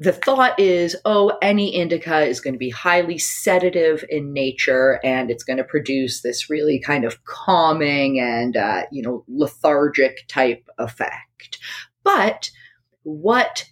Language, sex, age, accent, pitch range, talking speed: English, female, 30-49, American, 130-180 Hz, 145 wpm